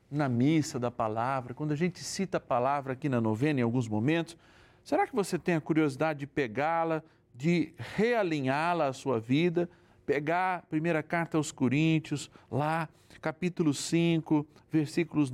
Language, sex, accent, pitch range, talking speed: Portuguese, male, Brazilian, 115-155 Hz, 155 wpm